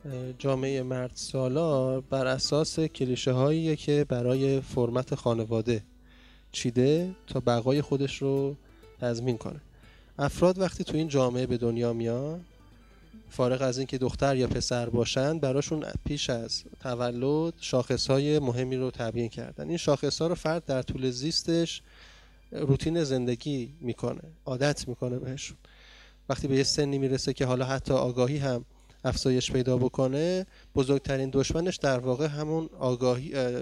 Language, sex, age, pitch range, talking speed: Persian, male, 20-39, 125-155 Hz, 130 wpm